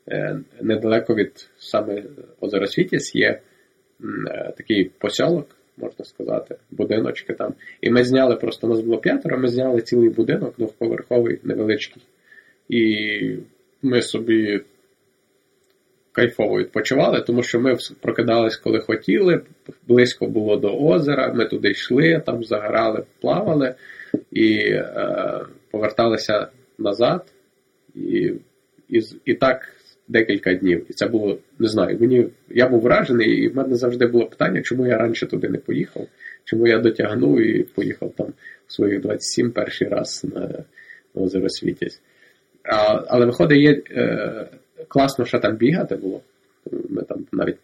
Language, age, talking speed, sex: Ukrainian, 20-39, 130 wpm, male